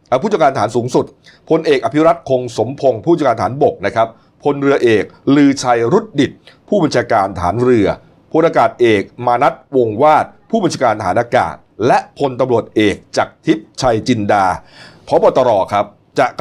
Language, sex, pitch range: Thai, male, 110-145 Hz